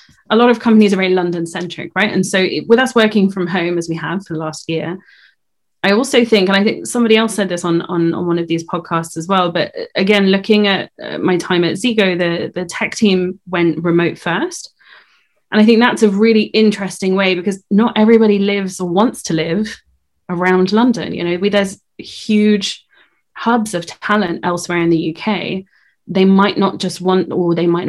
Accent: British